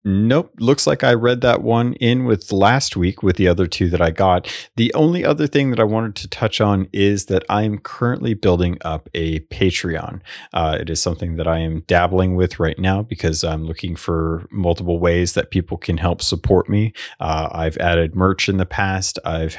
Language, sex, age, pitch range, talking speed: English, male, 30-49, 85-105 Hz, 210 wpm